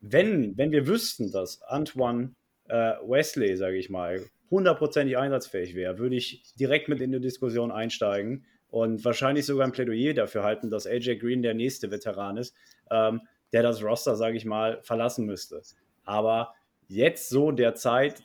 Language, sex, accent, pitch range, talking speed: German, male, German, 110-130 Hz, 165 wpm